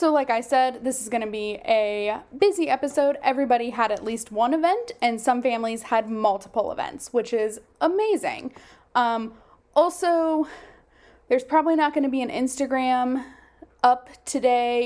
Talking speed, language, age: 160 wpm, English, 10-29